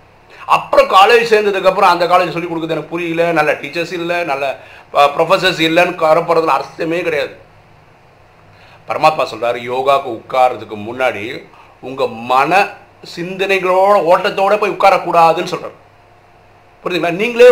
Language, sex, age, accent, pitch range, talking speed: Tamil, male, 50-69, native, 135-190 Hz, 110 wpm